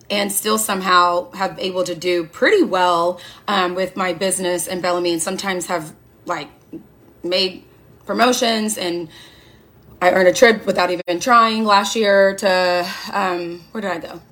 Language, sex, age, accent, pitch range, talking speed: English, female, 20-39, American, 185-240 Hz, 155 wpm